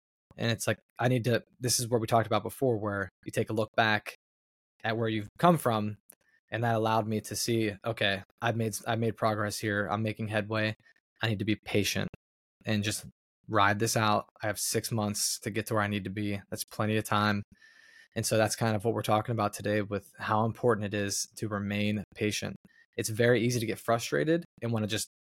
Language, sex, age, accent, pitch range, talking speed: English, male, 20-39, American, 105-120 Hz, 220 wpm